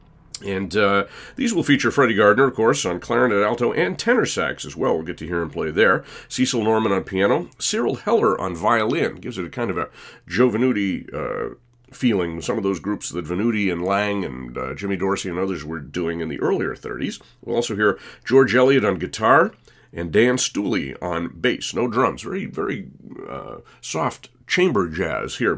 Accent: American